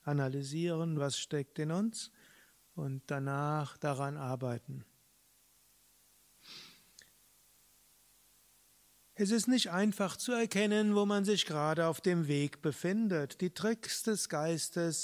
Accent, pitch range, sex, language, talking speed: German, 150-190 Hz, male, German, 110 wpm